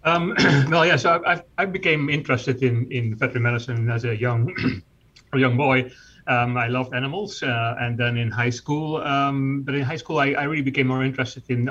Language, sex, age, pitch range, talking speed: English, male, 30-49, 115-130 Hz, 205 wpm